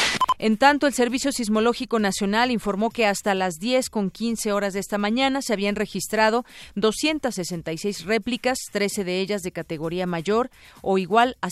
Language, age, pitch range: Spanish, 40-59, 185-235 Hz